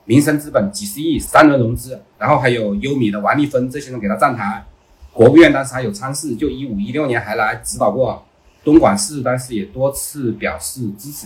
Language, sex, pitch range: Chinese, male, 105-150 Hz